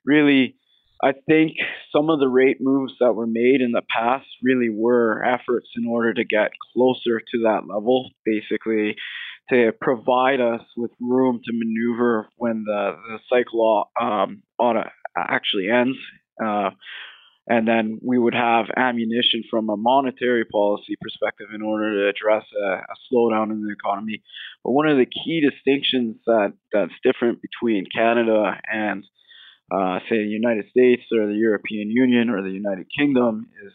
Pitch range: 110-125 Hz